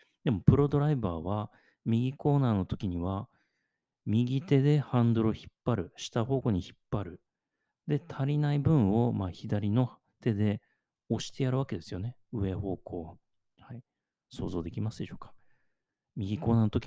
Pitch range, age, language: 95-125 Hz, 40-59, Japanese